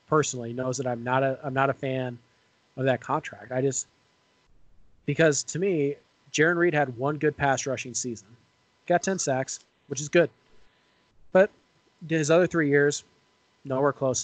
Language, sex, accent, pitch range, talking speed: English, male, American, 125-145 Hz, 165 wpm